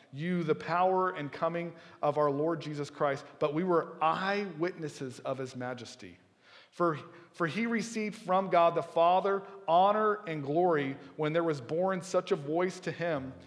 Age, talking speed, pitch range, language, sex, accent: 40-59, 165 wpm, 130-170 Hz, English, male, American